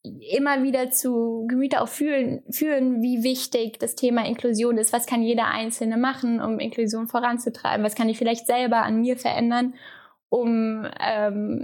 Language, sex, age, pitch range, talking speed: German, female, 10-29, 225-250 Hz, 160 wpm